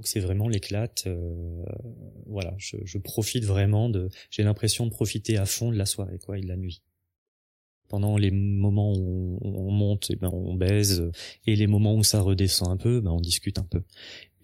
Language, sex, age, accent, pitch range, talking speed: French, male, 20-39, French, 100-120 Hz, 210 wpm